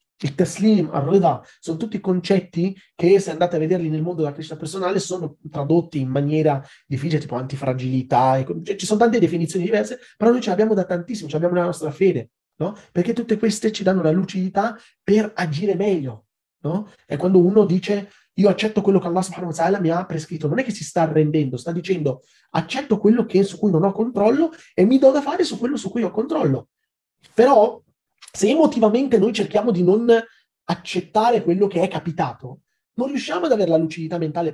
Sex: male